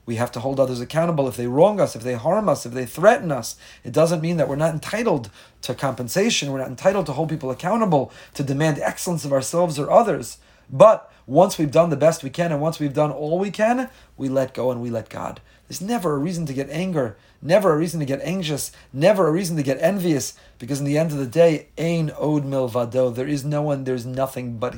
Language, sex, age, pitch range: English, male, 30-49, 130-165 Hz